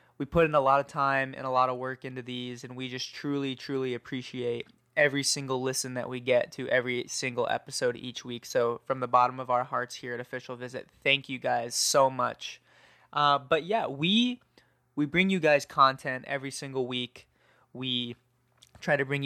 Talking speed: 200 wpm